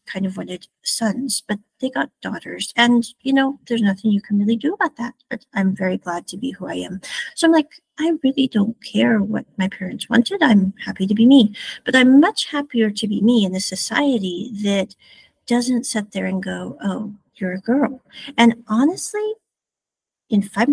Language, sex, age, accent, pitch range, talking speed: English, female, 50-69, American, 200-255 Hz, 195 wpm